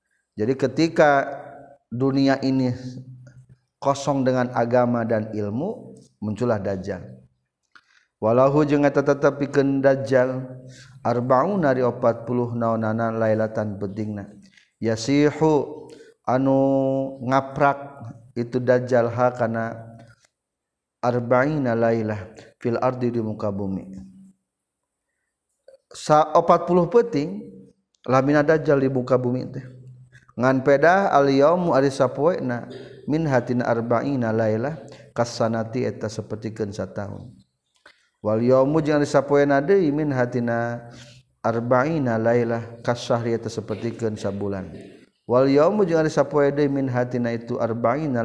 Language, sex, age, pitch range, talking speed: Indonesian, male, 40-59, 115-135 Hz, 95 wpm